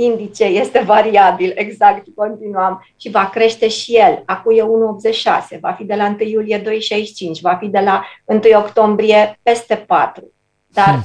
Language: Romanian